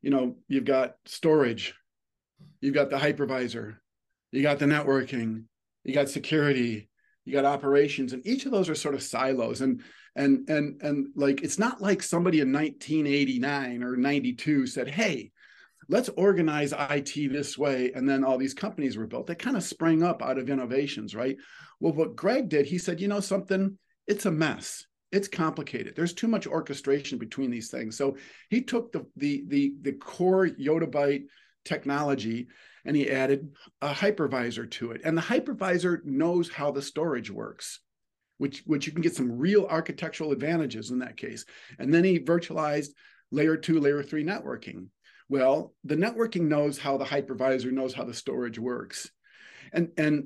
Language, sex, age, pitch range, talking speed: English, male, 40-59, 135-170 Hz, 170 wpm